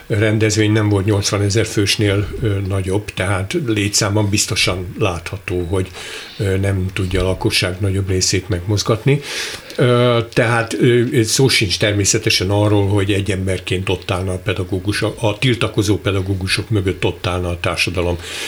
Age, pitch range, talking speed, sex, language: 60-79, 100-115 Hz, 125 wpm, male, Hungarian